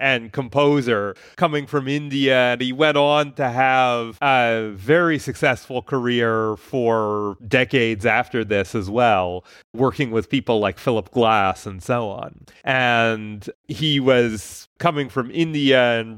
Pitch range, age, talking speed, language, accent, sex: 115-145 Hz, 30-49, 135 wpm, English, American, male